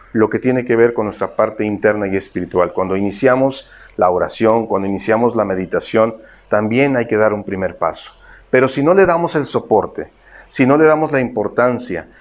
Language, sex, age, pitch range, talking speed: Spanish, male, 50-69, 110-135 Hz, 190 wpm